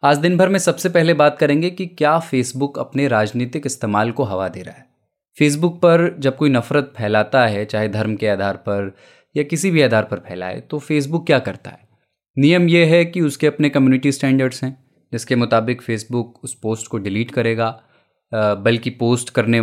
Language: Hindi